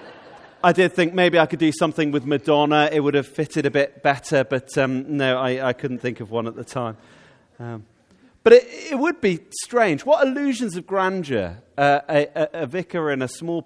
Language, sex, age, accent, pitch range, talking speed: English, male, 30-49, British, 140-200 Hz, 210 wpm